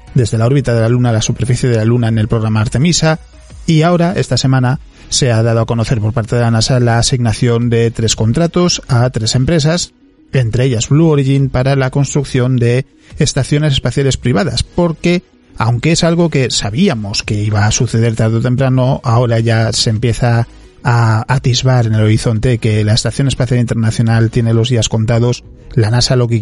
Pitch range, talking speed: 115-135 Hz, 195 wpm